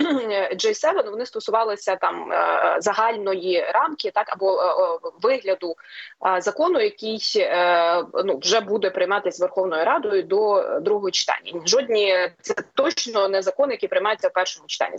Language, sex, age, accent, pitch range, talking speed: Ukrainian, female, 20-39, native, 185-305 Hz, 125 wpm